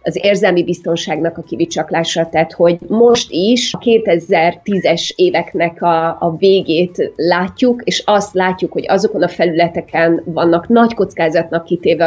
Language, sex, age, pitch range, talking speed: Hungarian, female, 30-49, 165-195 Hz, 135 wpm